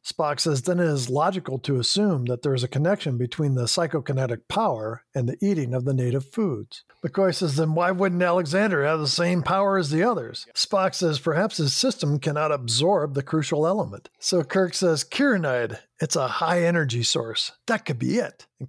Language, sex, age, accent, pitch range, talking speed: English, male, 50-69, American, 130-175 Hz, 195 wpm